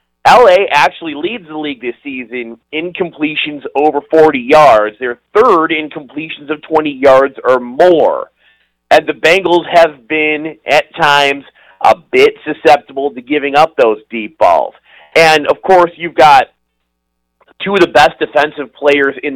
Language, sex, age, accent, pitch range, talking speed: English, male, 40-59, American, 140-170 Hz, 150 wpm